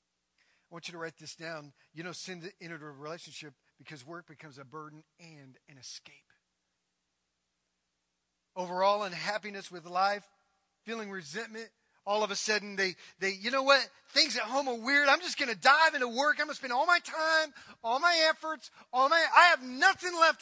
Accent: American